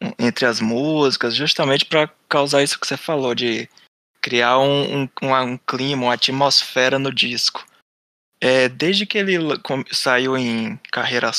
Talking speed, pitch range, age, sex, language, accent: 150 wpm, 130-165 Hz, 20-39, male, Portuguese, Brazilian